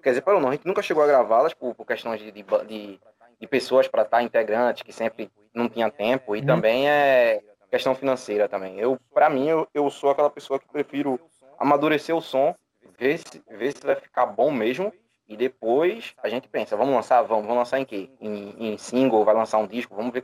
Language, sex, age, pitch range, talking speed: Portuguese, male, 20-39, 115-145 Hz, 220 wpm